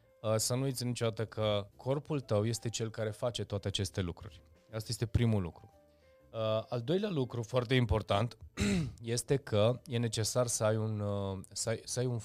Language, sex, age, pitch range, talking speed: Romanian, male, 20-39, 95-115 Hz, 150 wpm